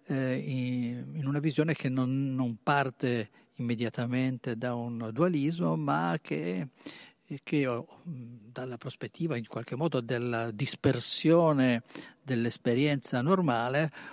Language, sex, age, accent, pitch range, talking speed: Italian, male, 50-69, native, 120-140 Hz, 95 wpm